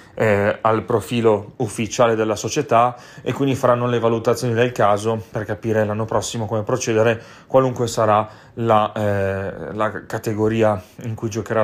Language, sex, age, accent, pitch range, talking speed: Italian, male, 30-49, native, 105-120 Hz, 145 wpm